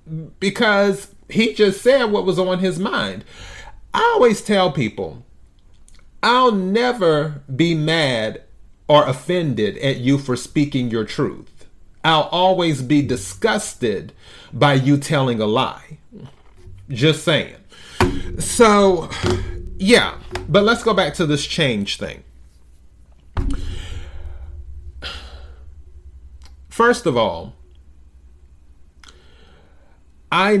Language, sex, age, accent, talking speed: English, male, 30-49, American, 100 wpm